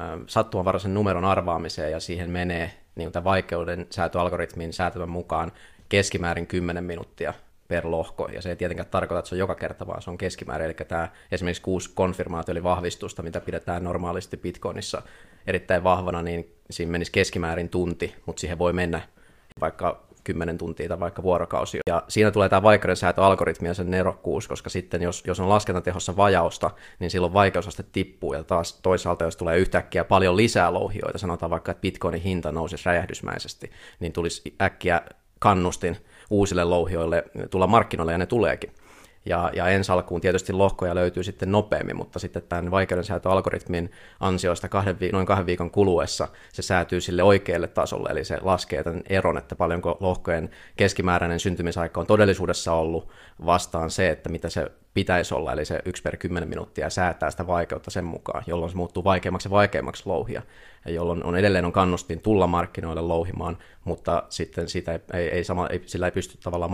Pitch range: 85-95 Hz